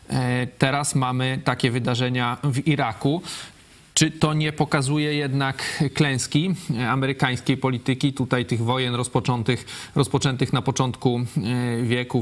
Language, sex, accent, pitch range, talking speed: Polish, male, native, 120-135 Hz, 105 wpm